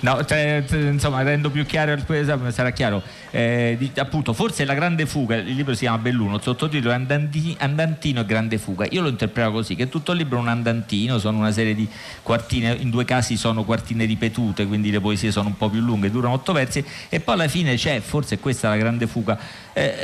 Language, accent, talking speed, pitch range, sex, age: Italian, native, 230 wpm, 105-140 Hz, male, 40-59